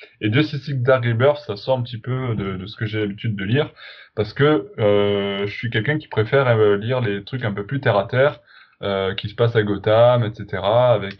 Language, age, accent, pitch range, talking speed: French, 20-39, French, 105-125 Hz, 235 wpm